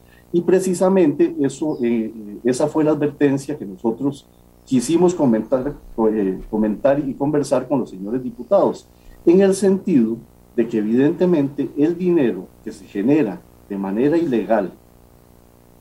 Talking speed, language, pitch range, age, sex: 135 wpm, Spanish, 95-150 Hz, 40-59, male